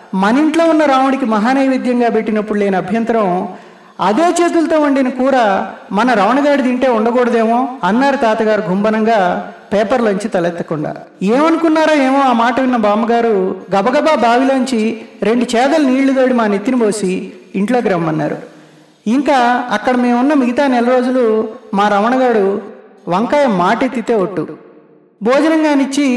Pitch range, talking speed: 205-265 Hz, 115 wpm